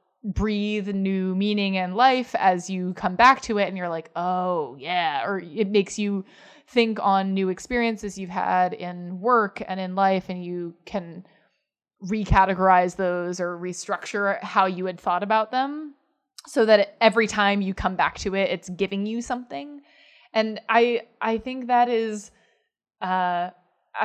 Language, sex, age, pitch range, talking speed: English, female, 20-39, 185-240 Hz, 160 wpm